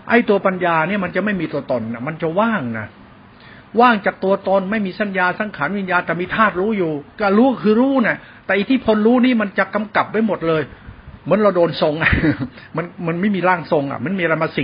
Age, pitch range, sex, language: 60-79, 145-200 Hz, male, Thai